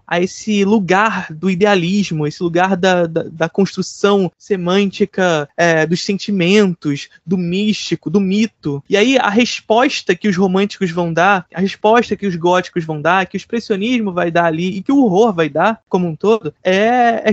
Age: 20-39